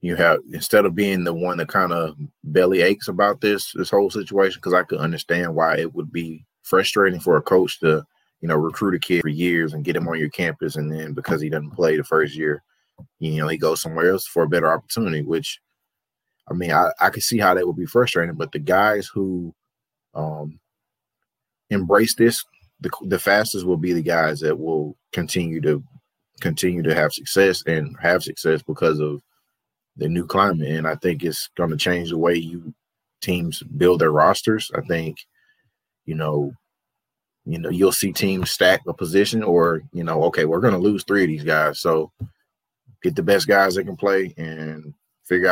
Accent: American